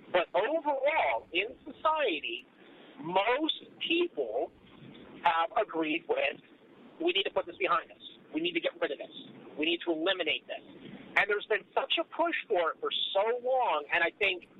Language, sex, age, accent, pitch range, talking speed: English, male, 50-69, American, 205-340 Hz, 175 wpm